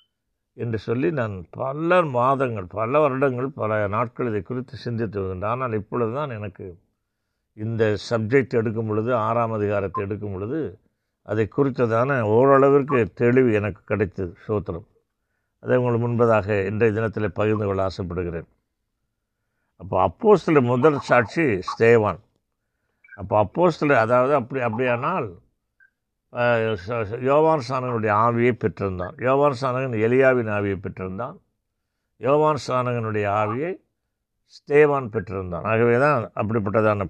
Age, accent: 60-79, native